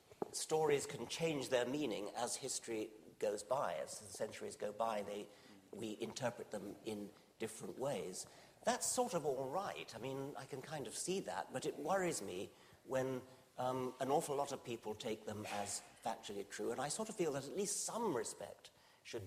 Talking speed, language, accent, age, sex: 190 wpm, English, British, 50-69, male